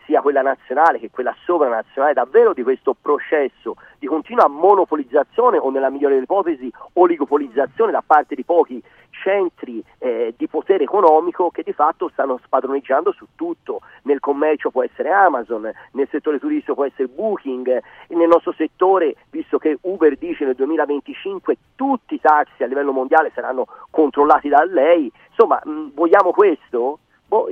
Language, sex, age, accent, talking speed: Italian, male, 40-59, native, 150 wpm